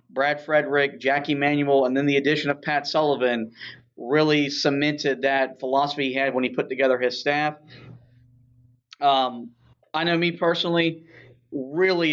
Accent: American